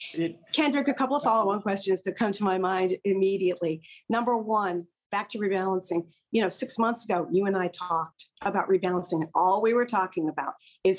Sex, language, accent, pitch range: female, English, American, 185-220 Hz